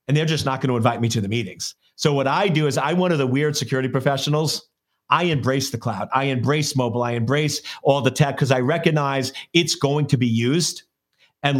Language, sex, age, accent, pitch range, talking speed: English, male, 40-59, American, 130-155 Hz, 230 wpm